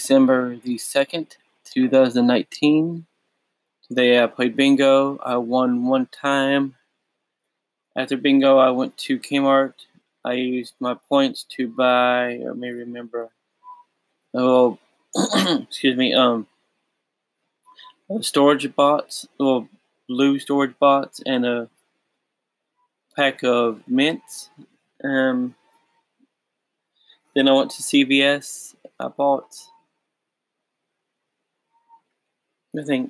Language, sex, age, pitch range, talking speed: English, male, 20-39, 125-145 Hz, 100 wpm